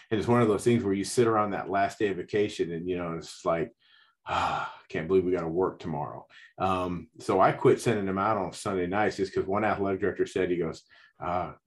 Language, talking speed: English, 245 wpm